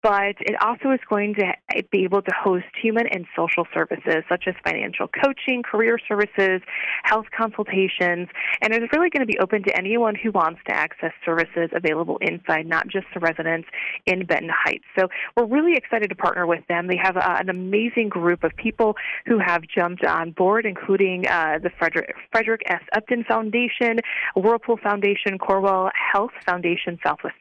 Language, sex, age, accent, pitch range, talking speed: English, female, 30-49, American, 170-220 Hz, 175 wpm